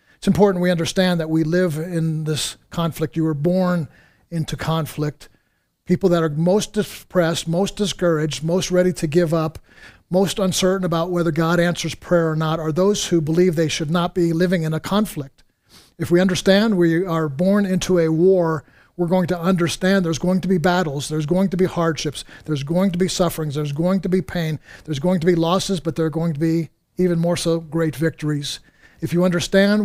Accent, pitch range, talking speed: American, 160-180 Hz, 200 wpm